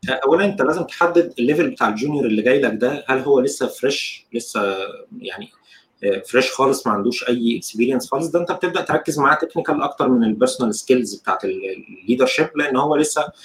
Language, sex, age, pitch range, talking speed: Arabic, male, 30-49, 115-155 Hz, 180 wpm